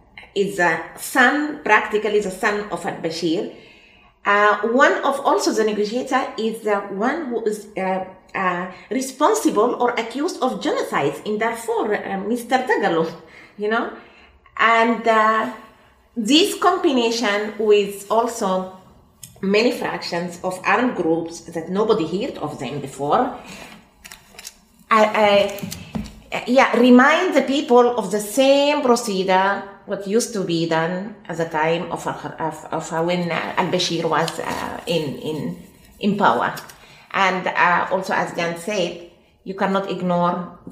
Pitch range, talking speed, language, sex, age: 175-230 Hz, 130 wpm, English, female, 30-49